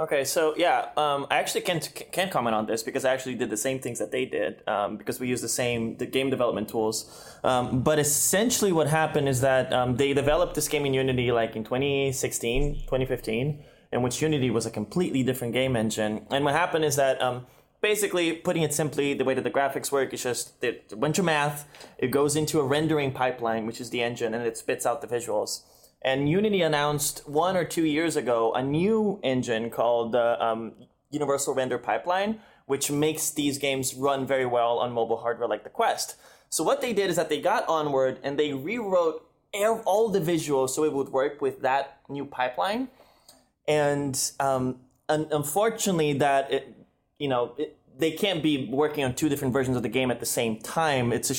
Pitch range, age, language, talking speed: 125-155 Hz, 20-39, English, 200 wpm